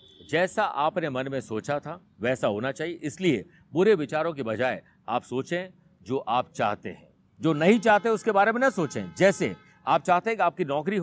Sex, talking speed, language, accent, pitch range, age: male, 190 wpm, Hindi, native, 145-195 Hz, 50-69